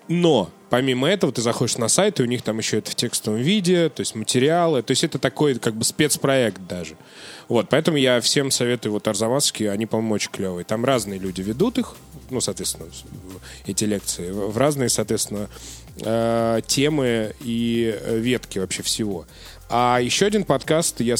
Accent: native